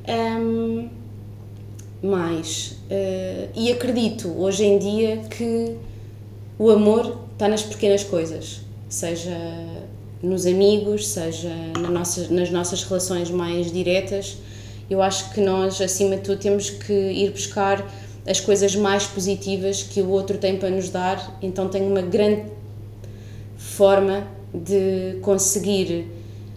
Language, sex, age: Portuguese, female, 20-39